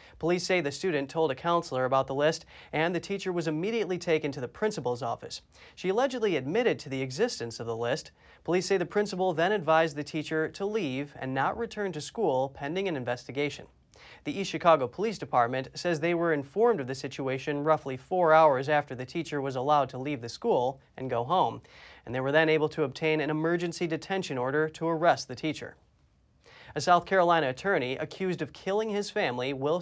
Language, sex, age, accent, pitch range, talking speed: English, male, 30-49, American, 140-175 Hz, 200 wpm